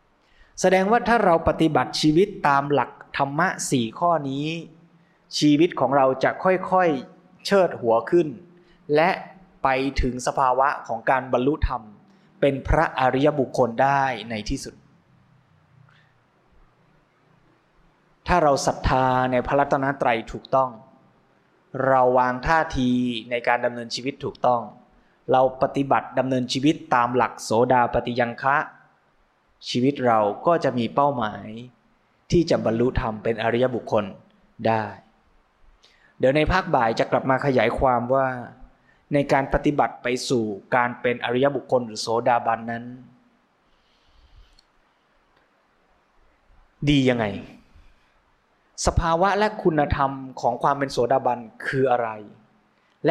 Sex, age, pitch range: male, 20-39, 120-155 Hz